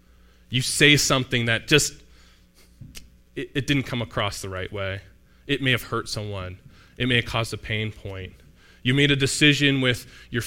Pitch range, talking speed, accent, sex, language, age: 95-130 Hz, 180 wpm, American, male, English, 20-39